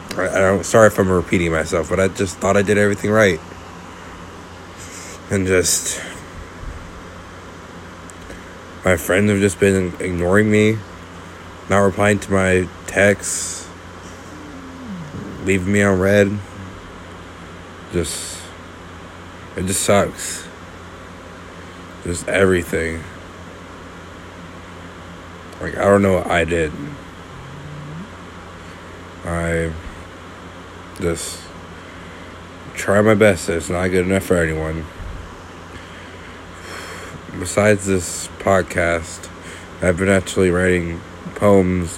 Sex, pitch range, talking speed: male, 90-95 Hz, 95 wpm